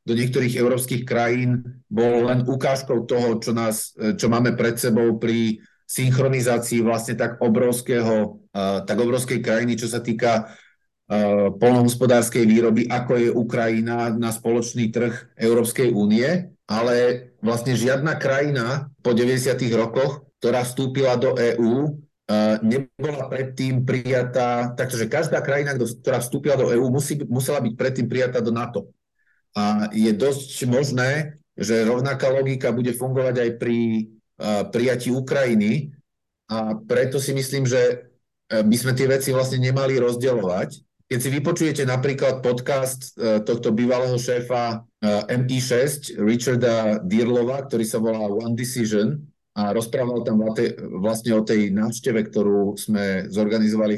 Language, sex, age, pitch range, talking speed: Slovak, male, 40-59, 115-130 Hz, 125 wpm